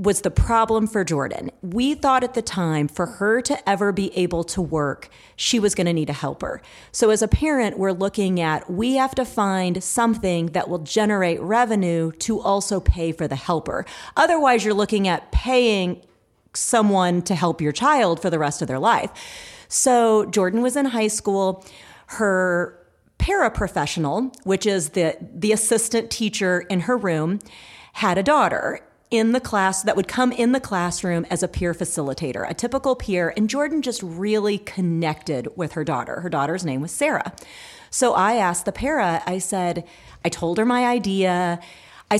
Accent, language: American, English